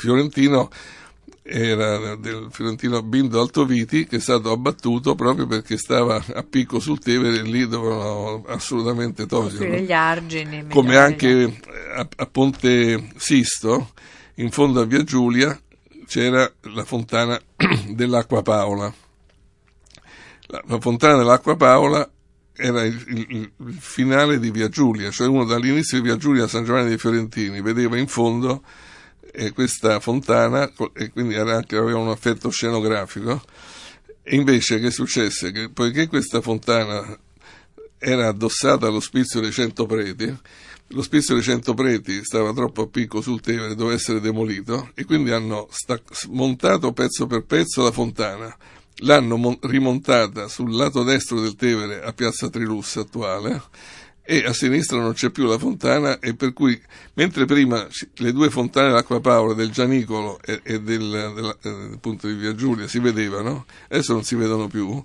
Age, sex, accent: 60-79, male, native